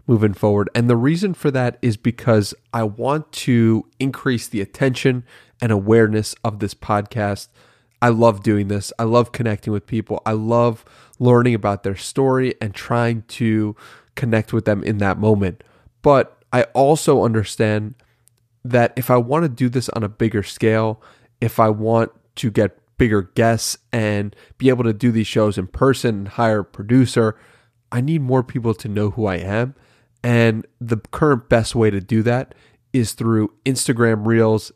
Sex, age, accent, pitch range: male, 30-49, American, 105-120 Hz